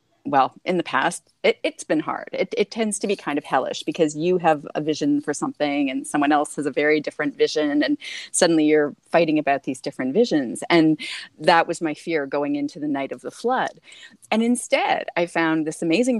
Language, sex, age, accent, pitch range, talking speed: English, female, 30-49, American, 150-195 Hz, 205 wpm